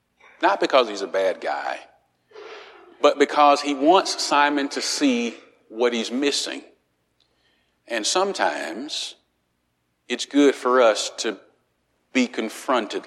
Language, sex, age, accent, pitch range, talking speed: English, male, 40-59, American, 110-140 Hz, 115 wpm